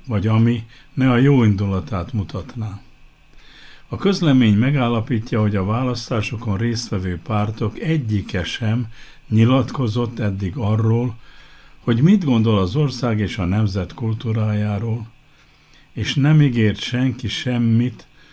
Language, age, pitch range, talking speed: Hungarian, 60-79, 100-125 Hz, 110 wpm